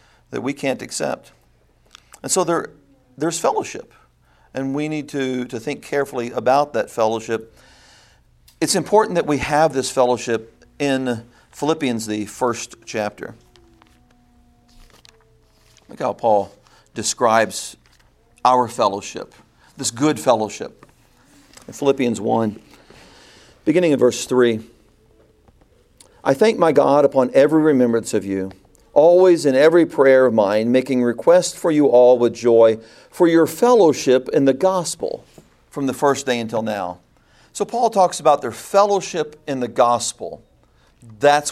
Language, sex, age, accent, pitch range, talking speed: English, male, 50-69, American, 115-155 Hz, 130 wpm